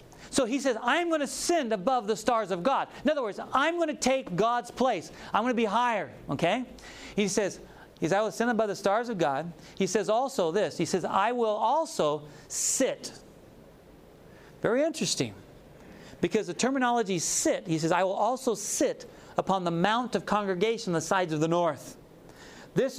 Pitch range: 150-235 Hz